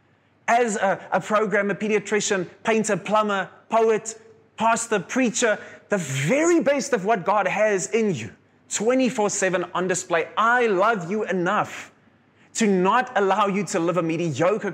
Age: 20-39